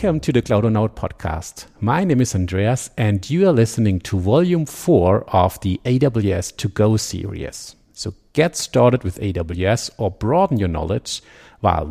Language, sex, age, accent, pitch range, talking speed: English, male, 50-69, German, 95-130 Hz, 155 wpm